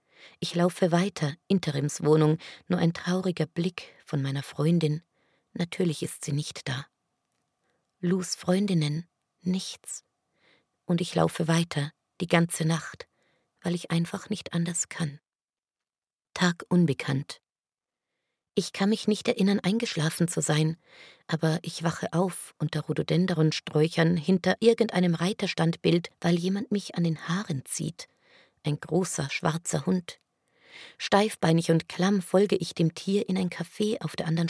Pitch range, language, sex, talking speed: 160-190 Hz, German, female, 130 wpm